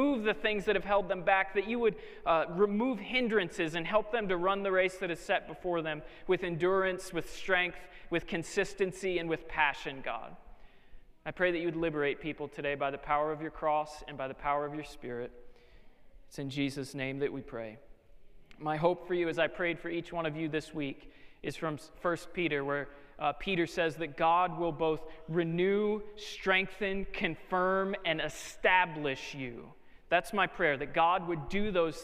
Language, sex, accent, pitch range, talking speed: English, male, American, 145-185 Hz, 195 wpm